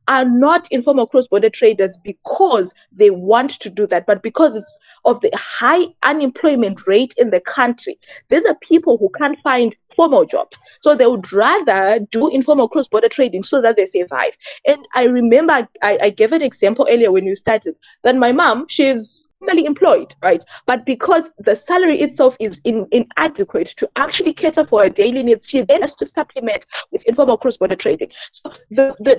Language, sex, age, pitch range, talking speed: English, female, 20-39, 220-315 Hz, 180 wpm